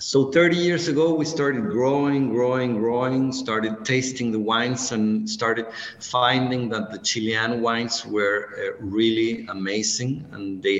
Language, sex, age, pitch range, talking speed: English, male, 50-69, 110-130 Hz, 145 wpm